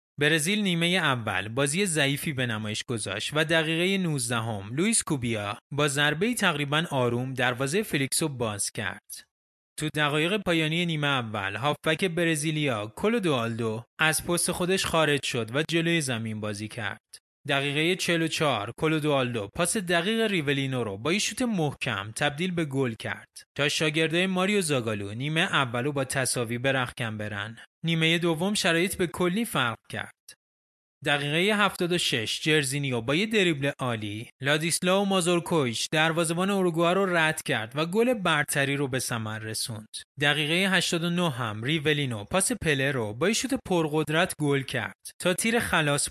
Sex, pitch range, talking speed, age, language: male, 125-175 Hz, 145 wpm, 20-39, Persian